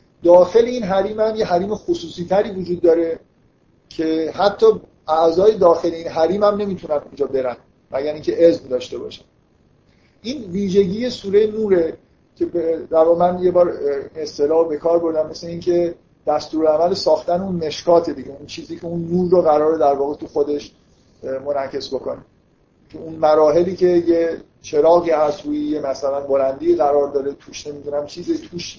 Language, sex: Persian, male